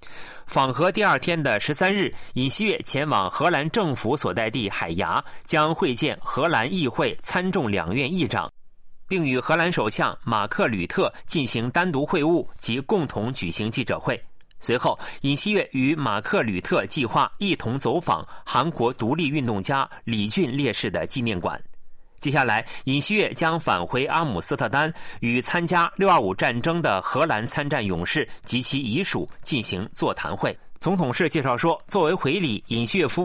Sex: male